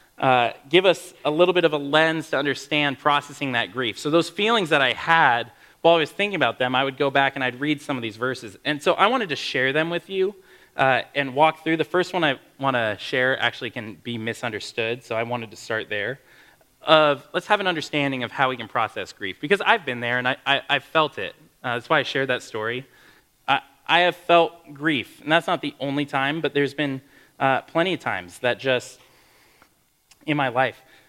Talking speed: 230 wpm